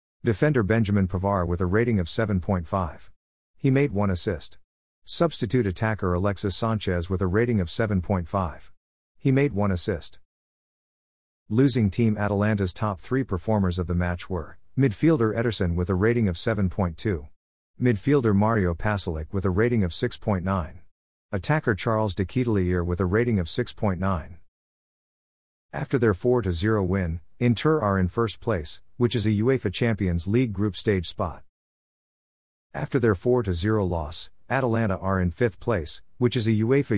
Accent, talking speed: American, 145 wpm